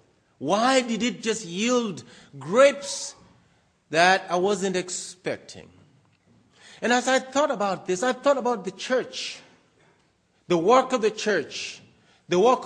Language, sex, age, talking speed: English, male, 40-59, 135 wpm